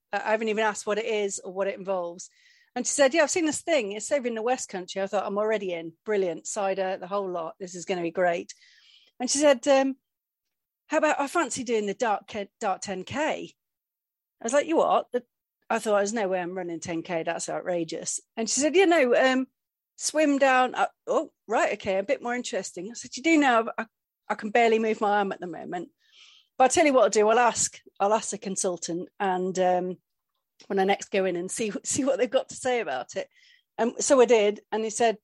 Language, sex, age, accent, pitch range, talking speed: English, female, 40-59, British, 195-255 Hz, 235 wpm